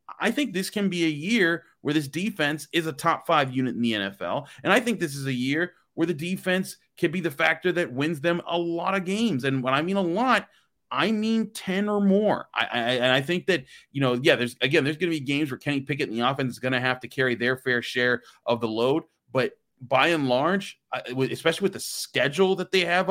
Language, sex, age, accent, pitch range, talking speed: English, male, 30-49, American, 125-170 Hz, 245 wpm